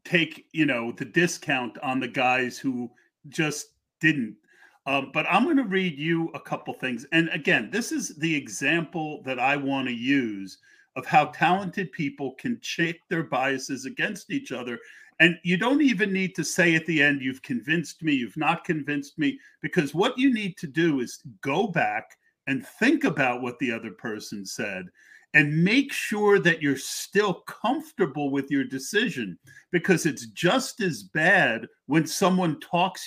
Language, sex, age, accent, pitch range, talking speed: English, male, 50-69, American, 140-180 Hz, 170 wpm